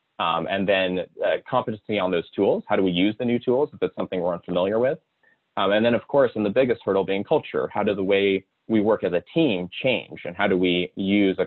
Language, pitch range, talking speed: English, 90-110 Hz, 250 wpm